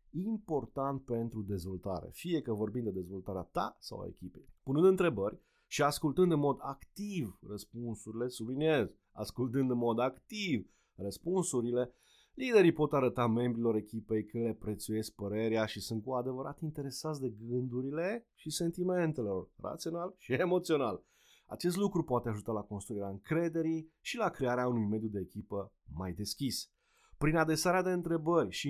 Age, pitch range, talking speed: 30-49, 110-160 Hz, 140 wpm